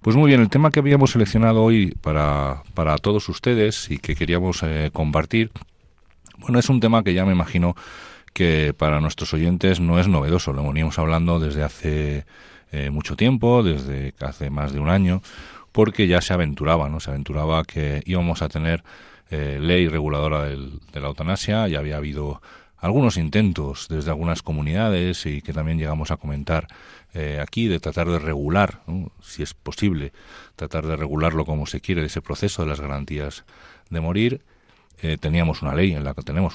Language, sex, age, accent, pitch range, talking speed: Spanish, male, 40-59, Spanish, 75-95 Hz, 180 wpm